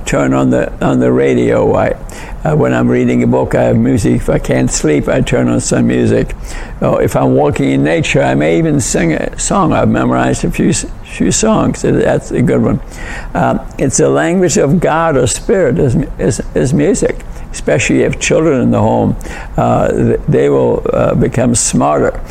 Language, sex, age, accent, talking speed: English, male, 60-79, American, 190 wpm